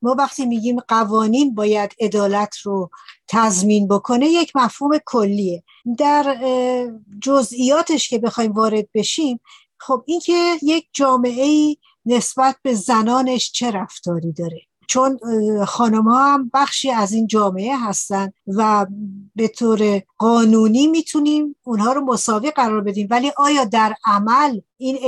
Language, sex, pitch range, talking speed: Persian, female, 205-260 Hz, 125 wpm